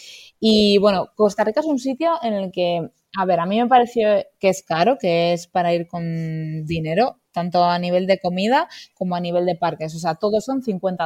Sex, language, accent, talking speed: female, Spanish, Spanish, 215 wpm